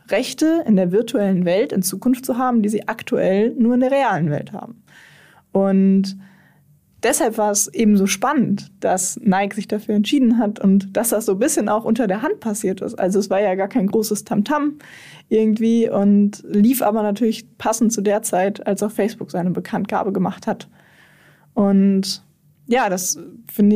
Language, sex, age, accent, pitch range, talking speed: German, female, 20-39, German, 185-220 Hz, 180 wpm